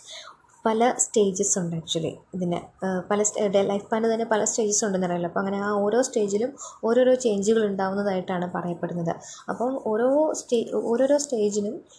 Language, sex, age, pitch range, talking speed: Malayalam, female, 20-39, 195-235 Hz, 145 wpm